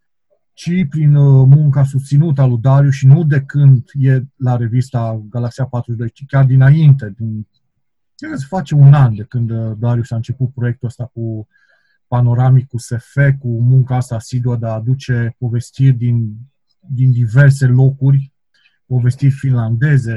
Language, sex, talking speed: Romanian, male, 150 wpm